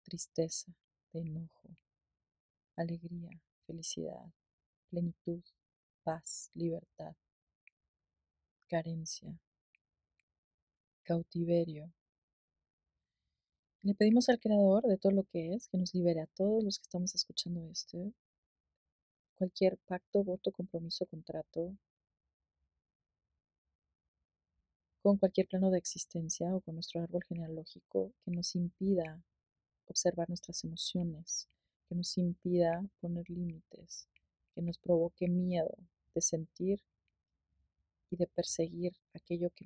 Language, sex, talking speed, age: Spanish, female, 100 wpm, 30-49